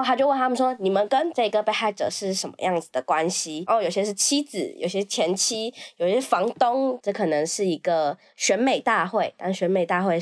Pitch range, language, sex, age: 170-235 Hz, Chinese, female, 20-39